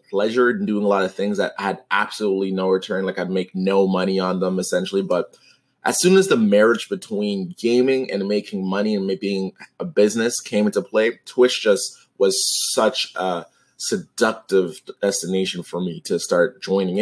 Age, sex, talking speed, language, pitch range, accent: 20-39, male, 180 wpm, English, 95-130 Hz, American